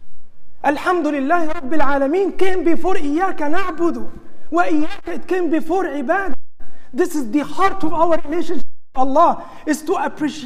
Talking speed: 130 wpm